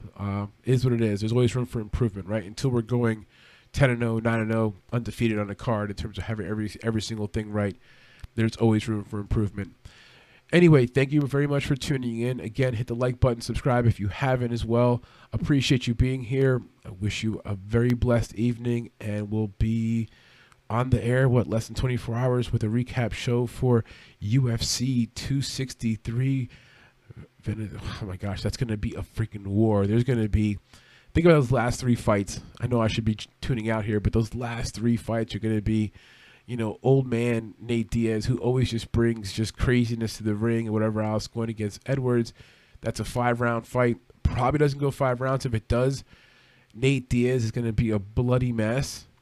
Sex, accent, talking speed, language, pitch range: male, American, 200 wpm, English, 110-125 Hz